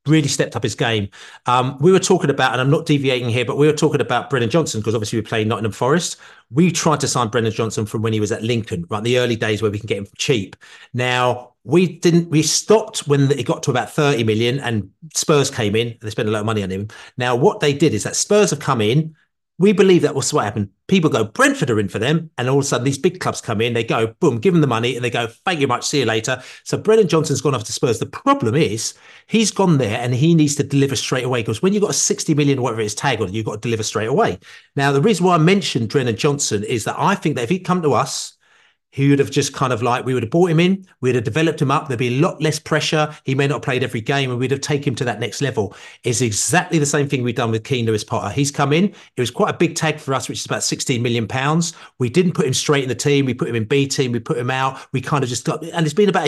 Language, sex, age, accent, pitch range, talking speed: English, male, 40-59, British, 120-160 Hz, 290 wpm